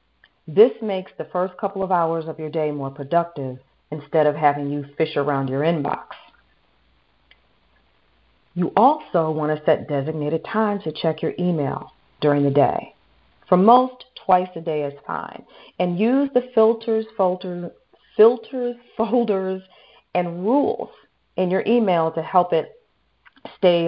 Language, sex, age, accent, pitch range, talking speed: English, female, 40-59, American, 145-190 Hz, 145 wpm